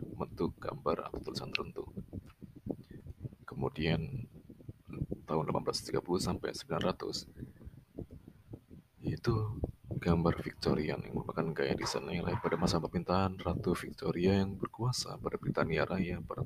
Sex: male